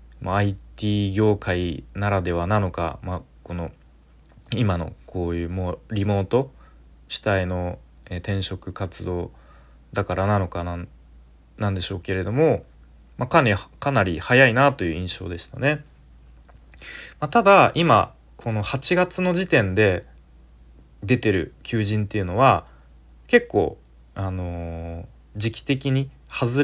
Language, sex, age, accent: Japanese, male, 20-39, native